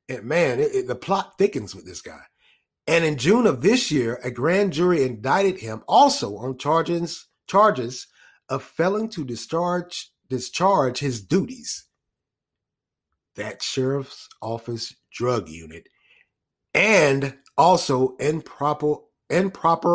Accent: American